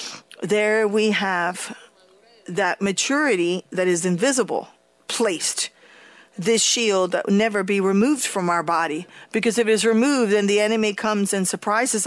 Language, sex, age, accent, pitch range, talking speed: English, female, 40-59, American, 185-225 Hz, 150 wpm